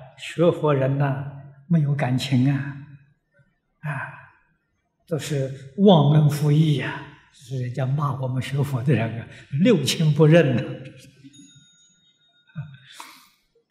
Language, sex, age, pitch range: Chinese, male, 60-79, 135-165 Hz